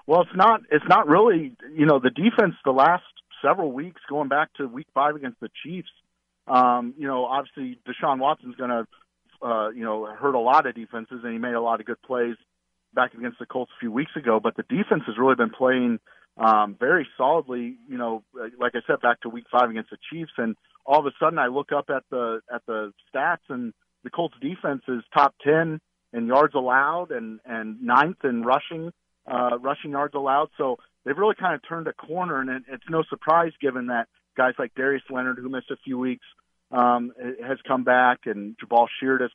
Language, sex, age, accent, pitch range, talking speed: English, male, 40-59, American, 120-140 Hz, 215 wpm